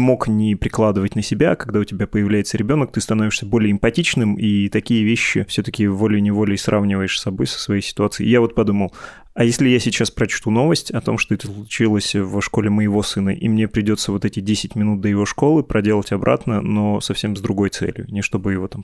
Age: 20-39